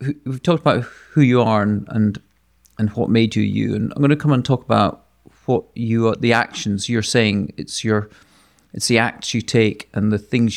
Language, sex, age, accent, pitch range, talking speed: English, male, 40-59, British, 100-120 Hz, 215 wpm